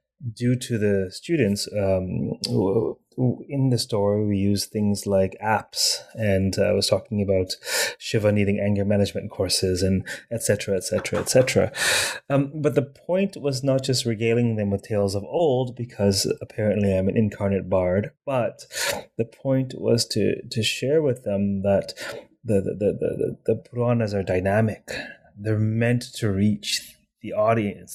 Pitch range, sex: 100-120 Hz, male